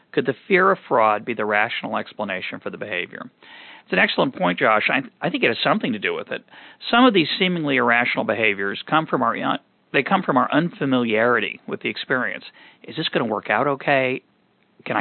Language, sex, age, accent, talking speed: English, male, 40-59, American, 215 wpm